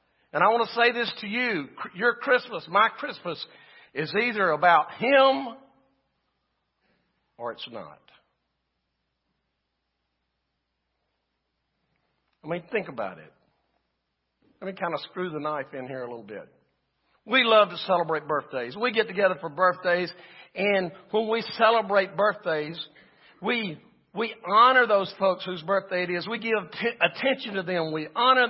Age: 60-79